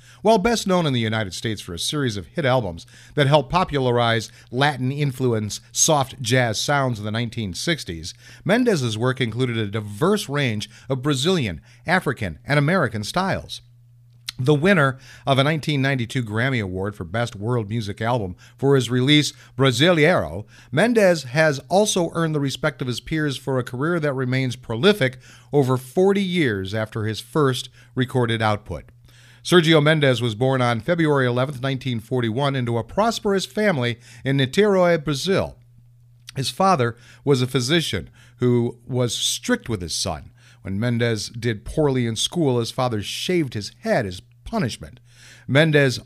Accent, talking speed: American, 150 wpm